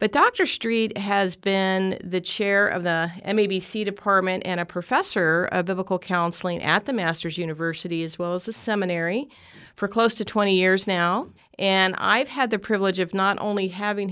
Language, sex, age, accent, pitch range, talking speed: English, female, 40-59, American, 170-195 Hz, 175 wpm